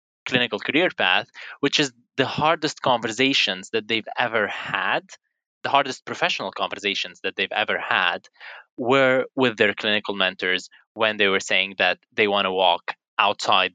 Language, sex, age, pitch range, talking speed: English, male, 20-39, 110-165 Hz, 155 wpm